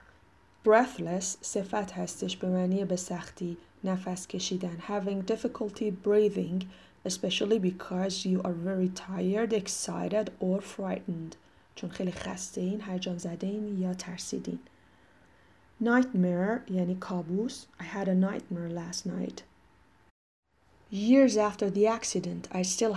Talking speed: 115 wpm